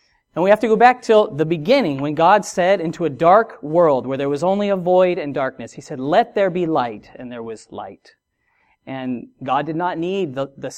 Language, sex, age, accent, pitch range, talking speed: English, male, 40-59, American, 145-200 Hz, 230 wpm